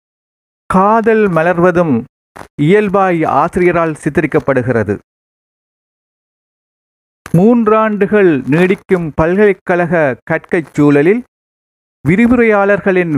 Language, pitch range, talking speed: Tamil, 170-215 Hz, 50 wpm